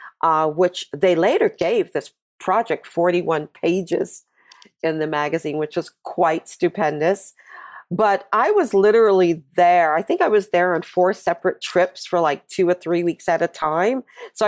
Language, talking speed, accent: English, 165 wpm, American